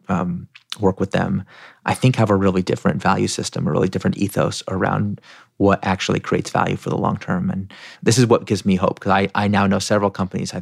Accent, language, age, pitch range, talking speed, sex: American, English, 30-49, 100-130 Hz, 225 wpm, male